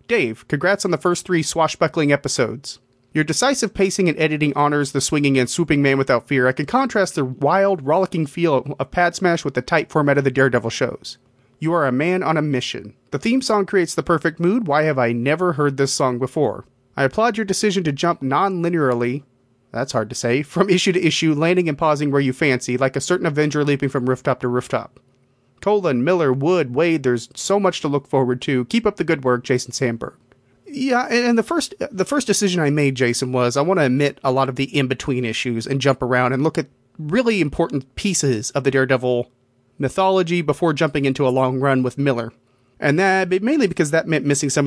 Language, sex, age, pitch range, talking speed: English, male, 30-49, 130-170 Hz, 215 wpm